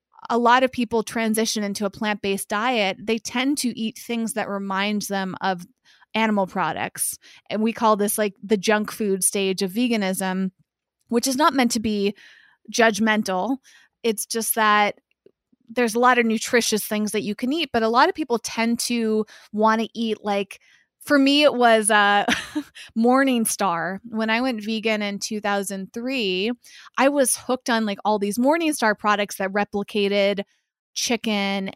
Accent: American